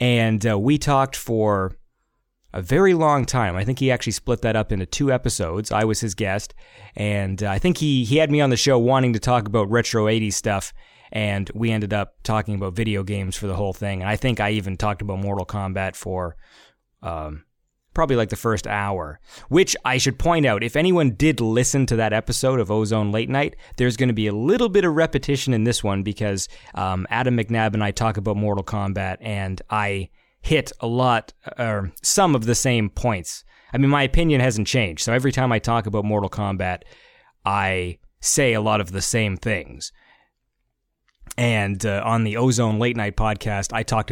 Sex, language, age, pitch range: male, English, 30-49, 100-125 Hz